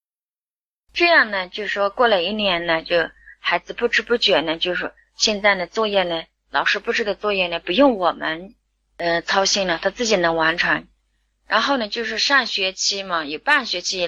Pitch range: 175-230 Hz